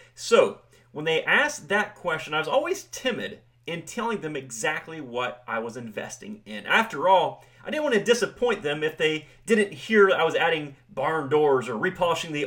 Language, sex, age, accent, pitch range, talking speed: English, male, 30-49, American, 140-220 Hz, 190 wpm